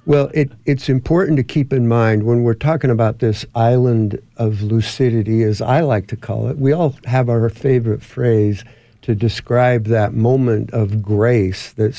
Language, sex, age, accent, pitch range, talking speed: English, male, 60-79, American, 110-130 Hz, 175 wpm